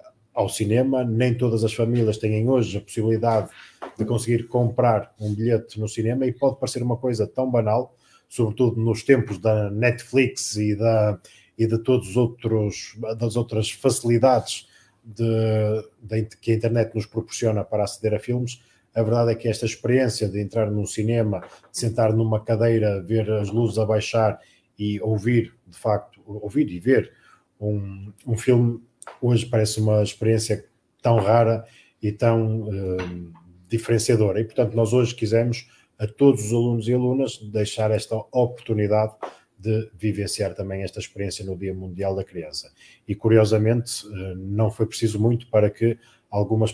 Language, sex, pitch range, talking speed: Portuguese, male, 105-115 Hz, 150 wpm